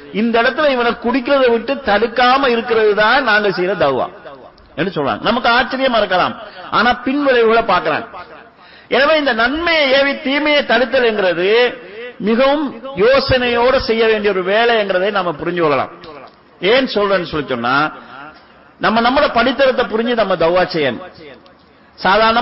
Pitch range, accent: 185-255 Hz, Indian